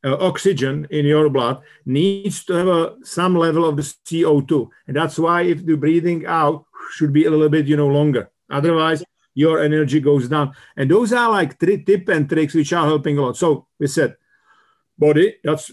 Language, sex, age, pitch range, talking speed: English, male, 50-69, 135-165 Hz, 200 wpm